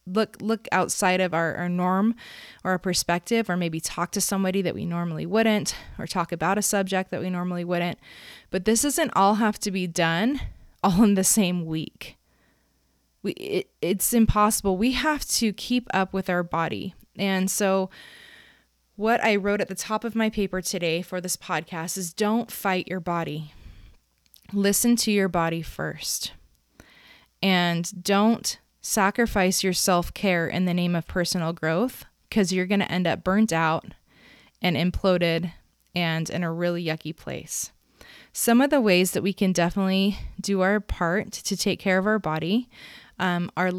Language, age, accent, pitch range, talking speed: English, 20-39, American, 170-205 Hz, 170 wpm